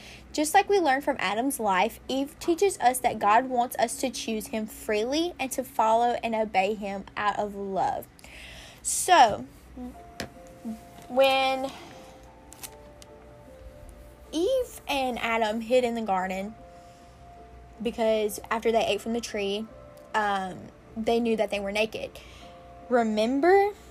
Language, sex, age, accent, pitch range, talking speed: English, female, 10-29, American, 205-265 Hz, 130 wpm